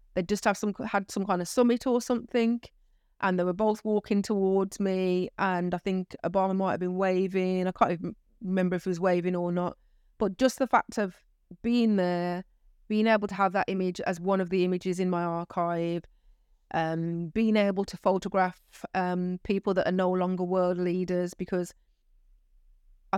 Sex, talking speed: female, 180 wpm